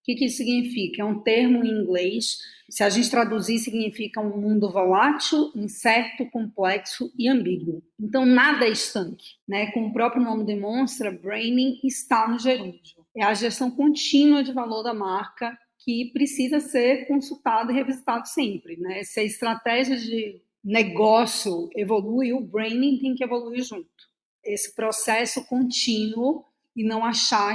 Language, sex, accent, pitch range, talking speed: Portuguese, female, Brazilian, 205-255 Hz, 150 wpm